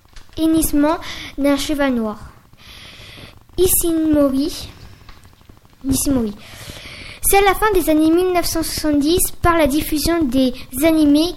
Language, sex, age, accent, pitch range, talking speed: French, female, 20-39, French, 275-325 Hz, 95 wpm